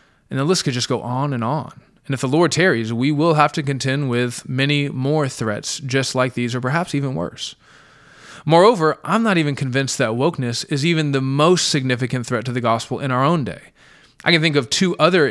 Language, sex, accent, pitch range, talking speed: English, male, American, 120-150 Hz, 220 wpm